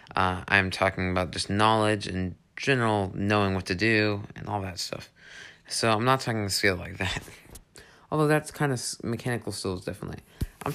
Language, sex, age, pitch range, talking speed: English, male, 30-49, 95-120 Hz, 180 wpm